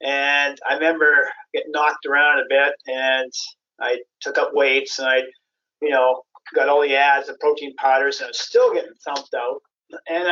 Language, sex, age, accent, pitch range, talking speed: English, male, 40-59, American, 145-230 Hz, 185 wpm